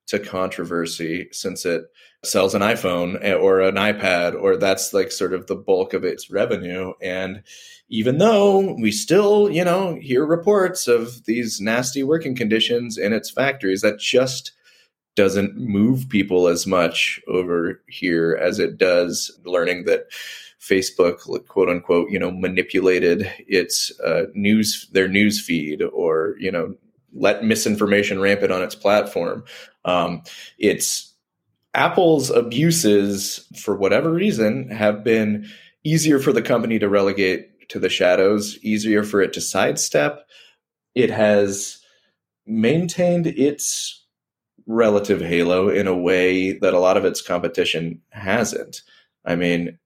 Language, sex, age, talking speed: English, male, 20-39, 135 wpm